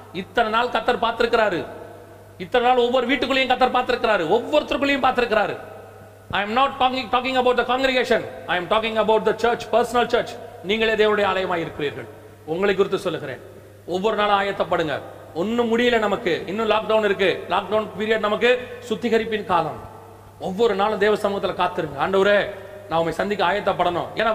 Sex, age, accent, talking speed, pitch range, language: male, 40-59, native, 35 wpm, 195-250 Hz, Tamil